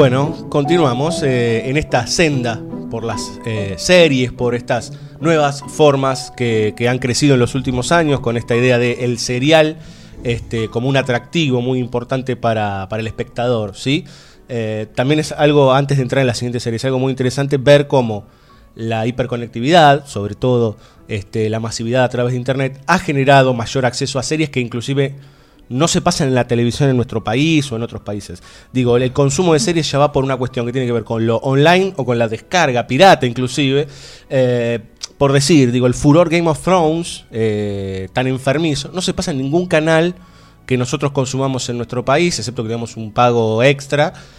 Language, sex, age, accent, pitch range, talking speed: Spanish, male, 20-39, Argentinian, 120-145 Hz, 185 wpm